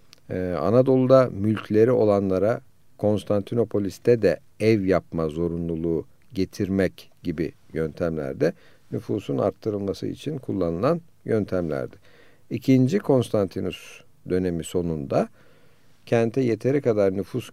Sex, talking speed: male, 85 wpm